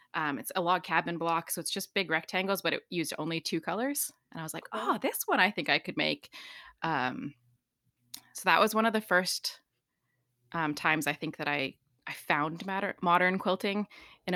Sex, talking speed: female, 205 wpm